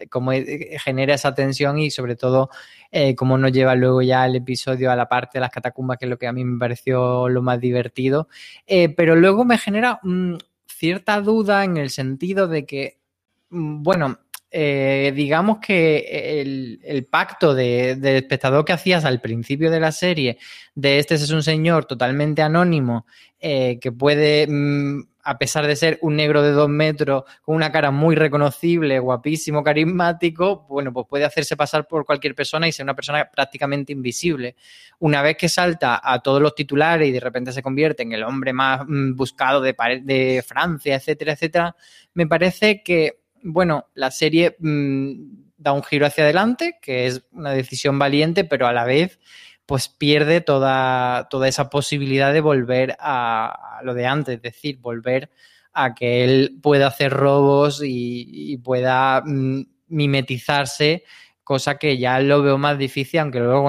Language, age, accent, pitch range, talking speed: Spanish, 20-39, Spanish, 130-155 Hz, 170 wpm